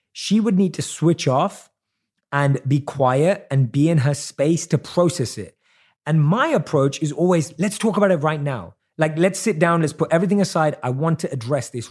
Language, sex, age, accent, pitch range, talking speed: English, male, 30-49, British, 130-175 Hz, 205 wpm